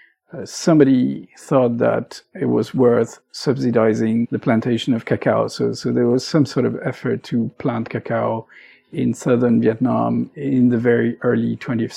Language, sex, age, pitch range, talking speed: English, male, 50-69, 115-140 Hz, 155 wpm